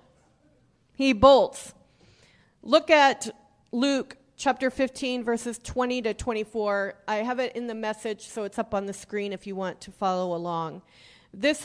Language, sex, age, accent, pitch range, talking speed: English, female, 40-59, American, 215-285 Hz, 155 wpm